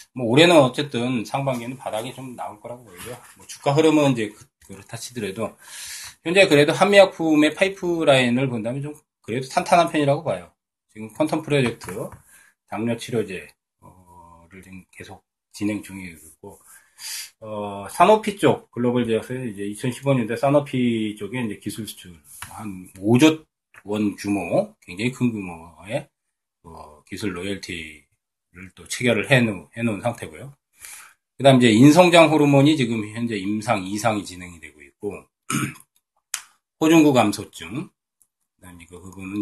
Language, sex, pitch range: Korean, male, 100-135 Hz